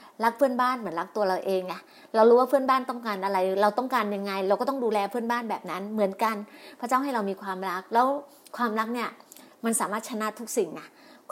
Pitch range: 210-280 Hz